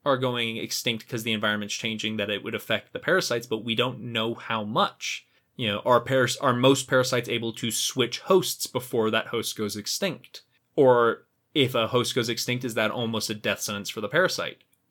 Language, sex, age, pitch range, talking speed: English, male, 20-39, 115-140 Hz, 200 wpm